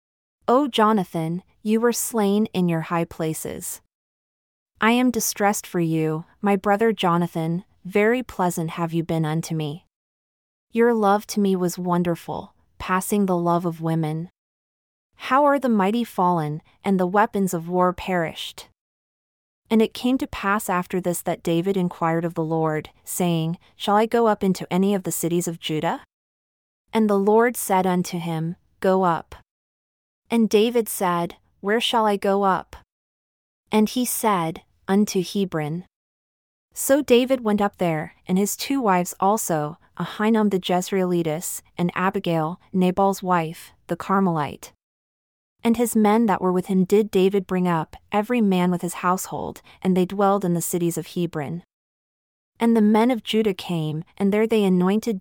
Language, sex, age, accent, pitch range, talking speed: English, female, 30-49, American, 170-210 Hz, 160 wpm